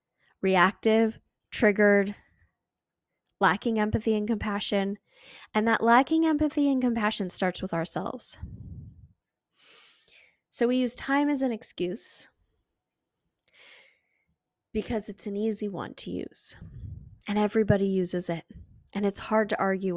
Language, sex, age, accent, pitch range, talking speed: English, female, 10-29, American, 180-235 Hz, 115 wpm